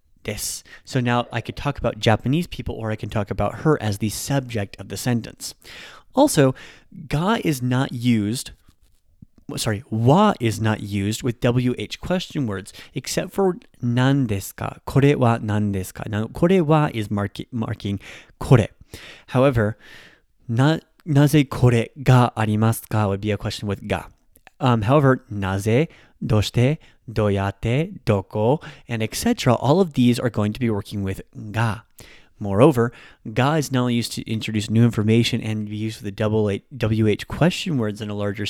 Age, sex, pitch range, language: 20-39, male, 105-140 Hz, English